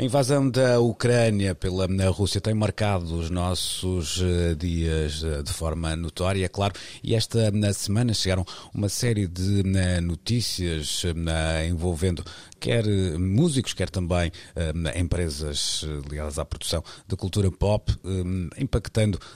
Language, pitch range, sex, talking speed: Portuguese, 85-105 Hz, male, 115 wpm